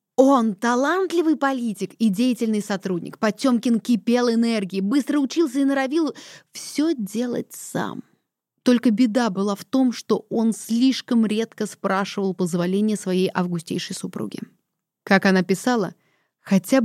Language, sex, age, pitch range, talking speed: Russian, female, 20-39, 185-250 Hz, 120 wpm